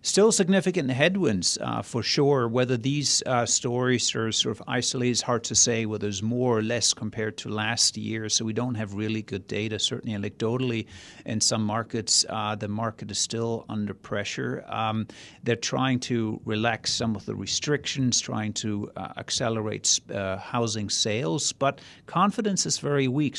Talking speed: 175 wpm